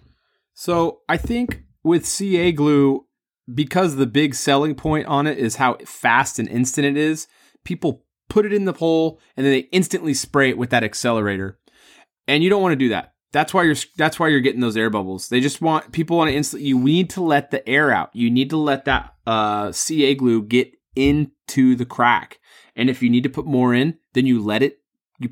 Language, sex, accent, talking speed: English, male, American, 215 wpm